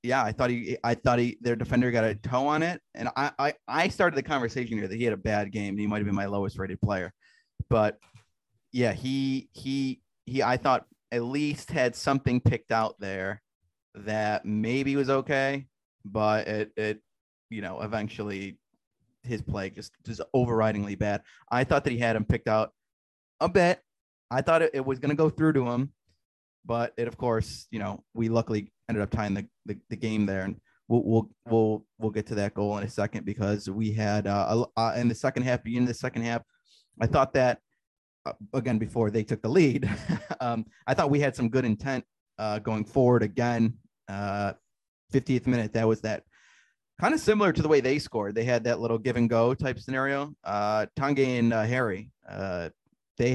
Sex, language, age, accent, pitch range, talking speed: male, English, 30-49, American, 105-125 Hz, 200 wpm